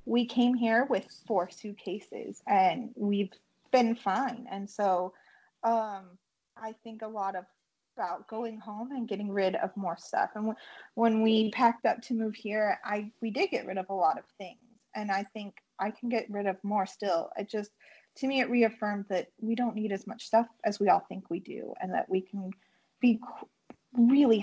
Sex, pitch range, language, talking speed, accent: female, 195-230 Hz, English, 195 wpm, American